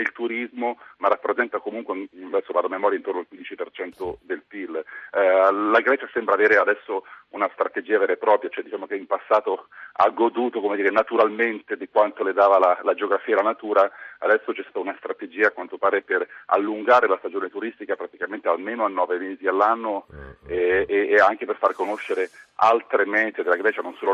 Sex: male